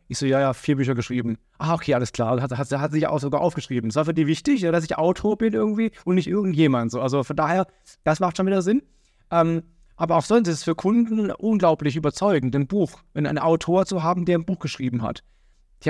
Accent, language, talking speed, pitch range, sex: German, German, 245 wpm, 145-185 Hz, male